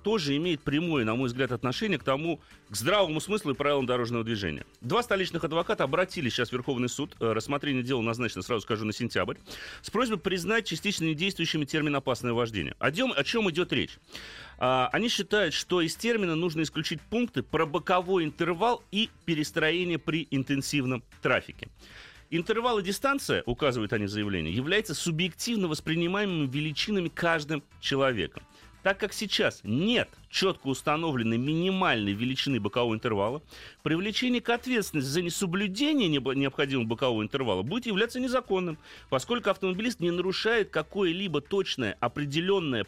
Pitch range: 130-195 Hz